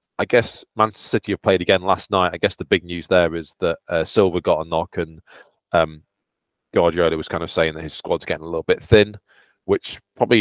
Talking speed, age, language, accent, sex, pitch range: 225 wpm, 20-39, English, British, male, 85-105 Hz